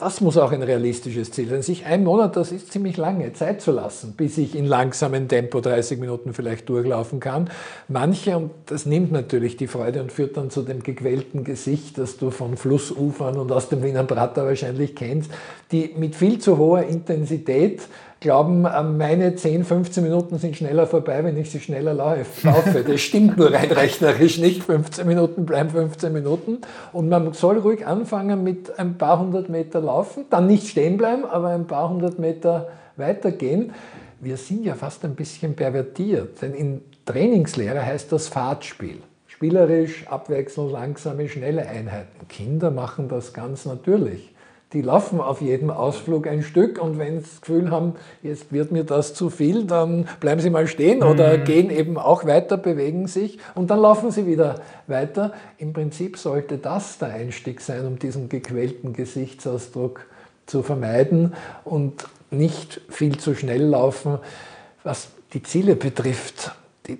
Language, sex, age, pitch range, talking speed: German, male, 50-69, 135-170 Hz, 165 wpm